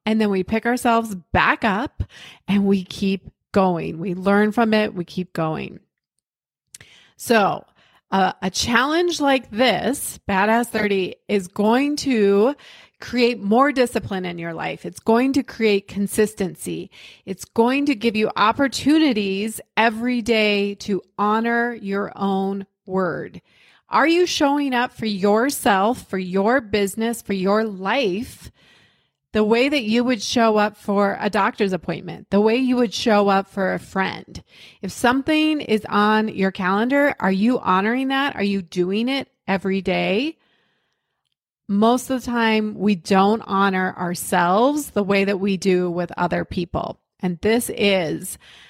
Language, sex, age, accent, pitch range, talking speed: English, female, 30-49, American, 195-240 Hz, 150 wpm